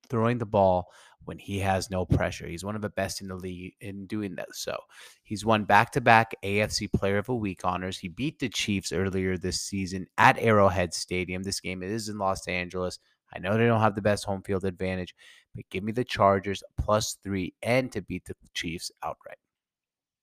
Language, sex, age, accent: English, male, 30-49, American